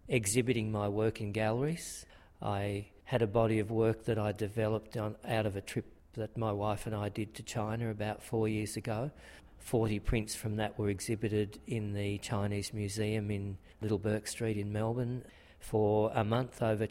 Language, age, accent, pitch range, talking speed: English, 50-69, Australian, 100-115 Hz, 175 wpm